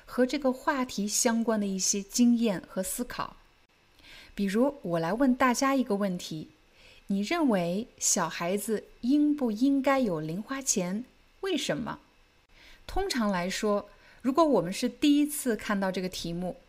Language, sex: Chinese, female